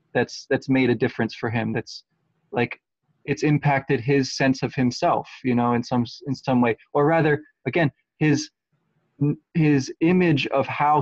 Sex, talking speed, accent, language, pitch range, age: male, 165 wpm, American, English, 115-145 Hz, 20-39